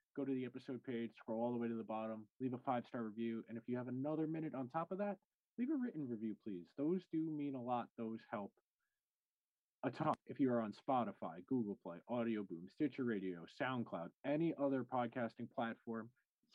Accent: American